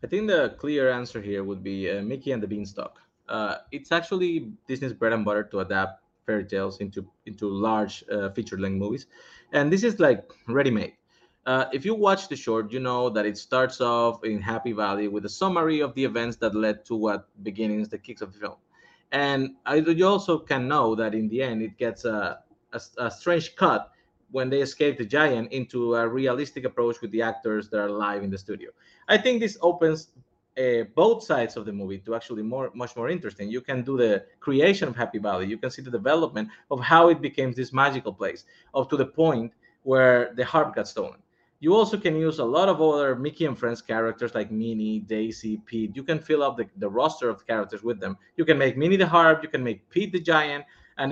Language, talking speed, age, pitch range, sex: English, 220 wpm, 30-49, 110-155 Hz, male